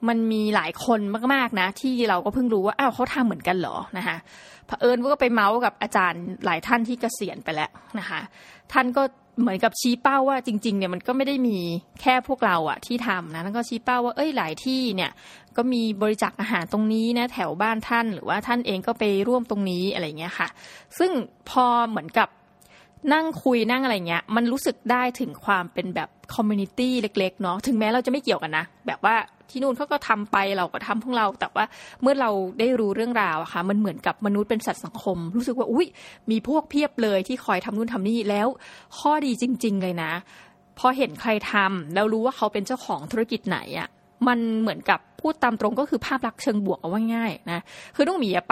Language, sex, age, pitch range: Thai, female, 20-39, 200-250 Hz